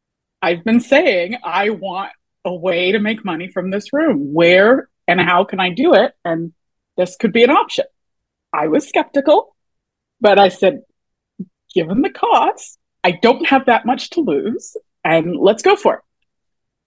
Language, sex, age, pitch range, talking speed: English, female, 30-49, 185-265 Hz, 165 wpm